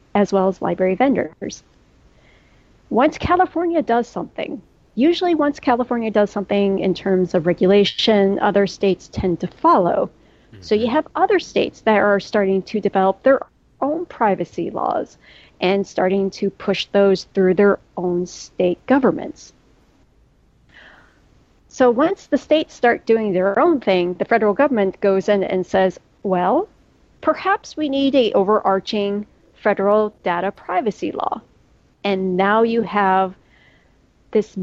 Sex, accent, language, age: female, American, English, 40-59